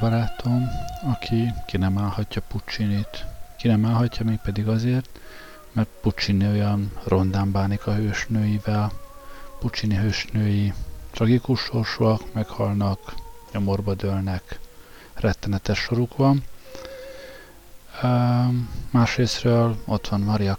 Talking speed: 95 wpm